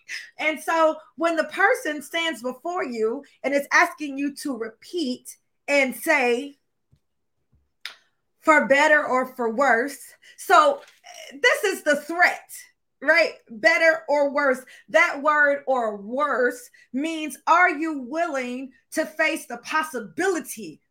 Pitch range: 285-370 Hz